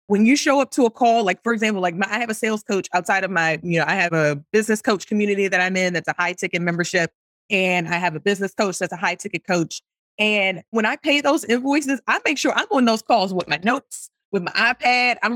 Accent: American